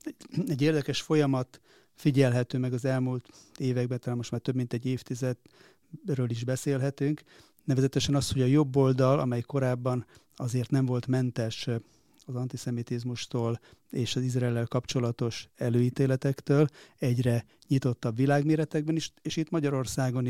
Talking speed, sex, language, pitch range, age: 125 wpm, male, Hungarian, 120-140 Hz, 30-49